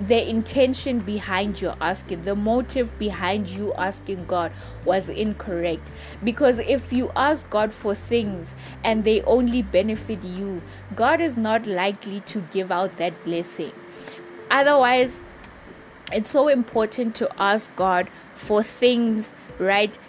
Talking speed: 130 wpm